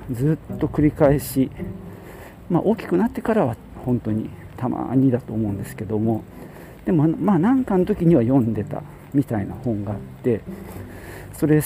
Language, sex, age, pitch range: Japanese, male, 50-69, 115-170 Hz